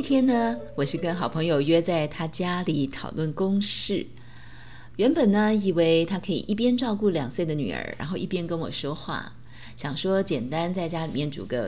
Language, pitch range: Chinese, 145-205 Hz